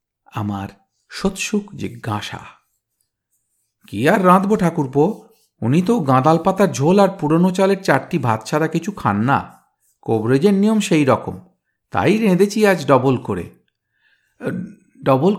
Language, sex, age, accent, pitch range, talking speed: Bengali, male, 50-69, native, 120-195 Hz, 115 wpm